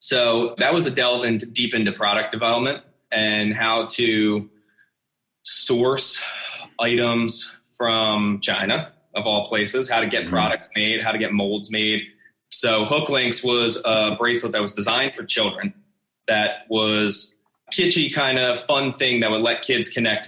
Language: English